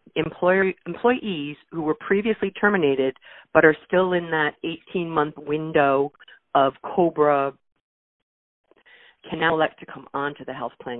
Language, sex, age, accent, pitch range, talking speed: English, female, 40-59, American, 140-170 Hz, 130 wpm